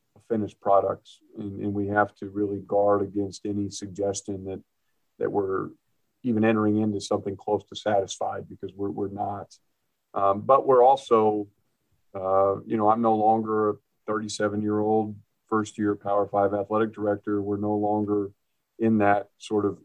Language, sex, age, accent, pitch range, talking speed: English, male, 50-69, American, 100-110 Hz, 150 wpm